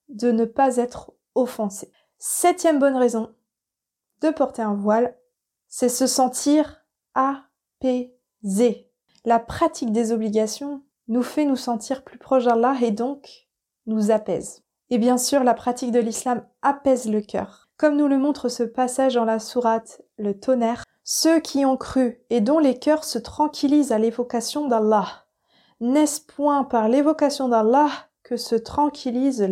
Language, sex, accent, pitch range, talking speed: French, female, French, 230-280 Hz, 150 wpm